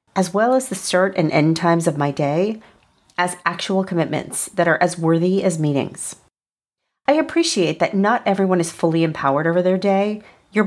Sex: female